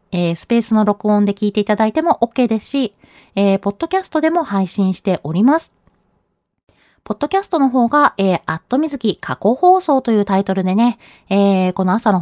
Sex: female